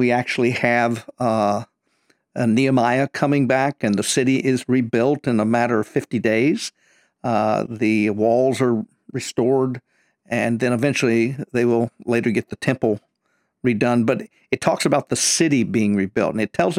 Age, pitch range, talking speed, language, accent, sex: 50-69, 110-130 Hz, 160 wpm, English, American, male